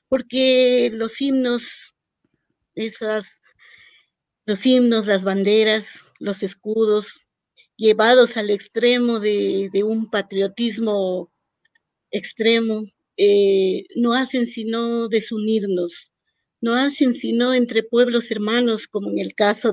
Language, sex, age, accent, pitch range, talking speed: Spanish, female, 50-69, American, 210-265 Hz, 100 wpm